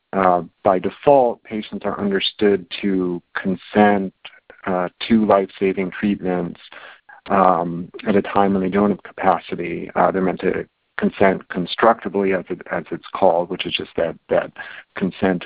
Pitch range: 95-105 Hz